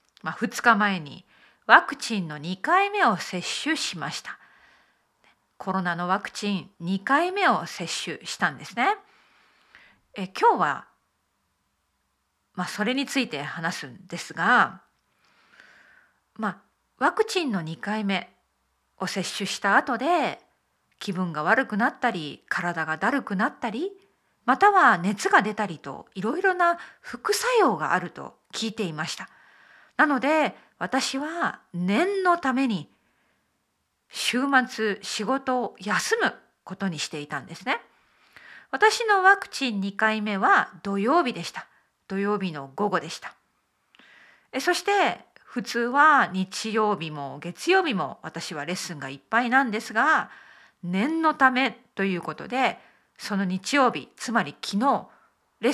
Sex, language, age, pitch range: female, Japanese, 40-59, 190-310 Hz